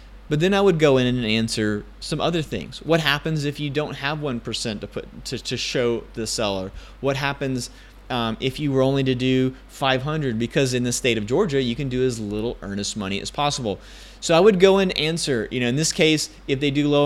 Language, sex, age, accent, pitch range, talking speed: English, male, 30-49, American, 115-145 Hz, 225 wpm